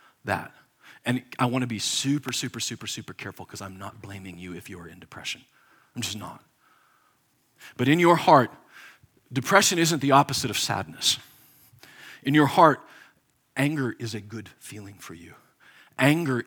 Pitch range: 105-140 Hz